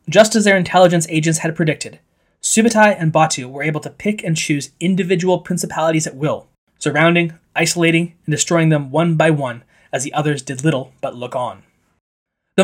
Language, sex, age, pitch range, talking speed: English, male, 20-39, 150-185 Hz, 175 wpm